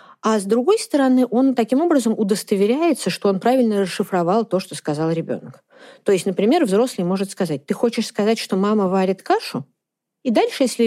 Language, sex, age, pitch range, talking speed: Russian, female, 40-59, 175-245 Hz, 175 wpm